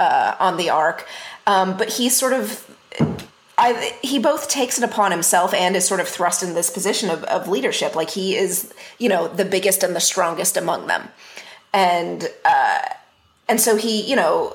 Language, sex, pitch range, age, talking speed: English, female, 185-230 Hz, 30-49, 190 wpm